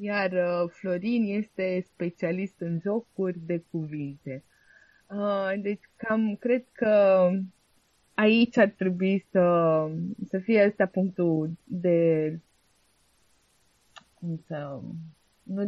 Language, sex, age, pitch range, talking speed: Romanian, female, 20-39, 170-215 Hz, 100 wpm